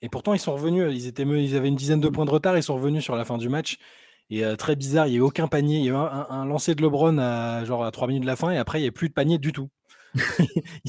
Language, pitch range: French, 110-145 Hz